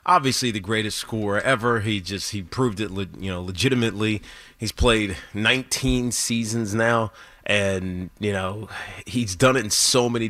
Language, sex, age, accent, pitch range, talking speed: English, male, 30-49, American, 100-120 Hz, 155 wpm